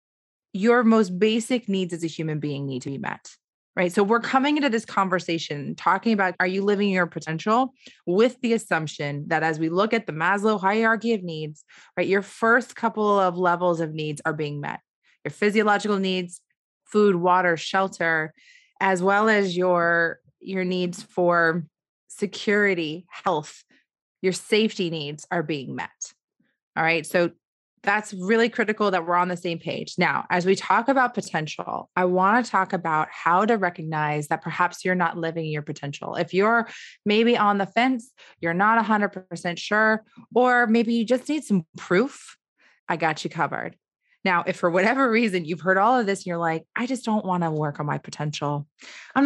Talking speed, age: 180 wpm, 20-39